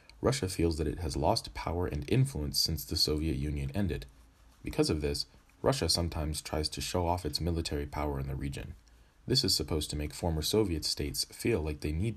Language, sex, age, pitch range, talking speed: English, male, 30-49, 75-90 Hz, 200 wpm